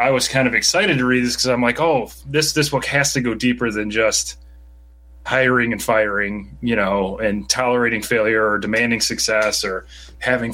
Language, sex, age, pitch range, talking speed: English, male, 30-49, 100-125 Hz, 195 wpm